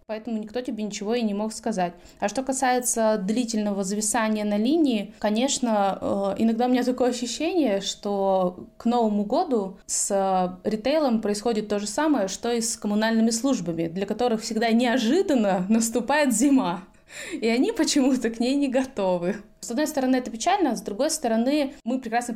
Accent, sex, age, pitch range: native, female, 20-39, 200-250 Hz